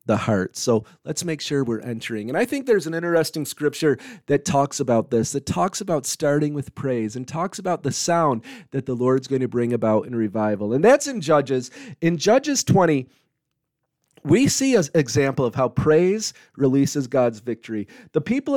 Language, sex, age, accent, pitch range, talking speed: English, male, 40-59, American, 130-170 Hz, 185 wpm